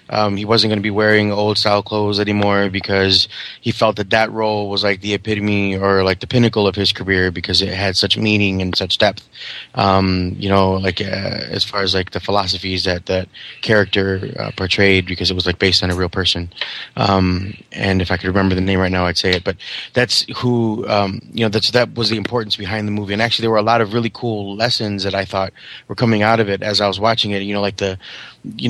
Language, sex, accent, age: English, male, American, 20-39